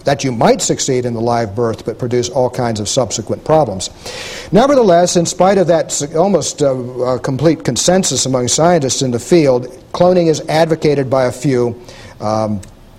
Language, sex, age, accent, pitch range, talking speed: English, male, 50-69, American, 125-170 Hz, 165 wpm